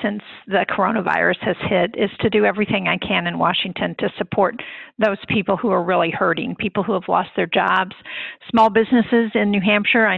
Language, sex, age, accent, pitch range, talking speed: English, female, 50-69, American, 190-225 Hz, 195 wpm